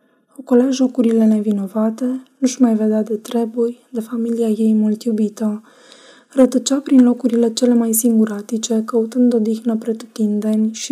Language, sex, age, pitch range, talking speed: Romanian, female, 20-39, 220-245 Hz, 130 wpm